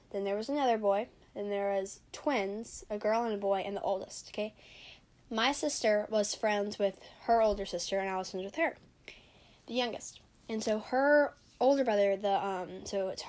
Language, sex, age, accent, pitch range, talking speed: English, female, 10-29, American, 200-245 Hz, 195 wpm